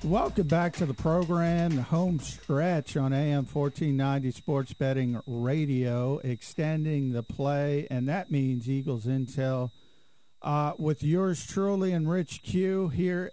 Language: English